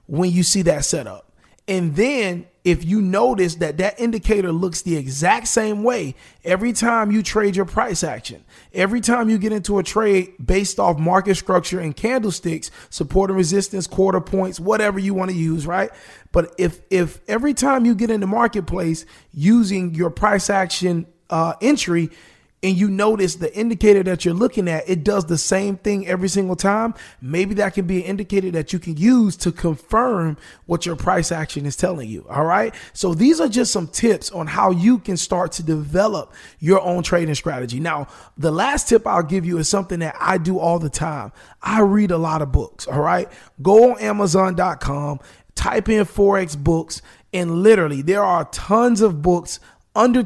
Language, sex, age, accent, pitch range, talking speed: English, male, 30-49, American, 165-205 Hz, 190 wpm